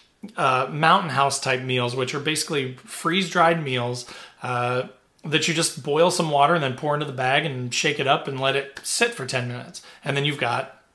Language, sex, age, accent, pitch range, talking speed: English, male, 30-49, American, 130-165 Hz, 210 wpm